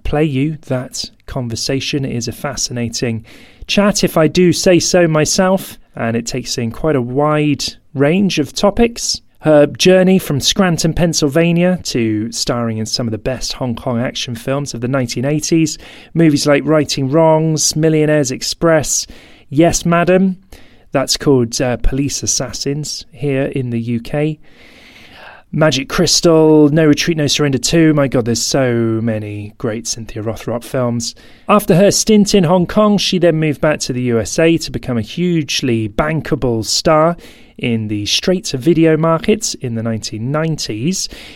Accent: British